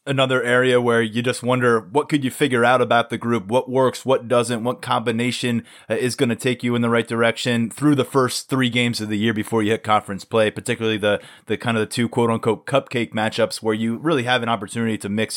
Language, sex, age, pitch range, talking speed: English, male, 20-39, 110-135 Hz, 240 wpm